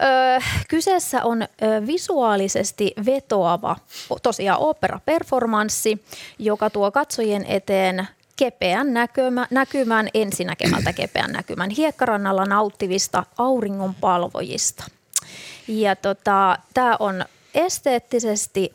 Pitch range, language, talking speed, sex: 200-255 Hz, Finnish, 75 wpm, female